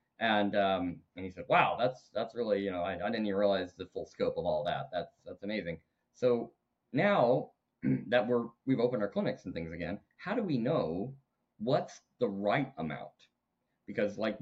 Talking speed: 190 wpm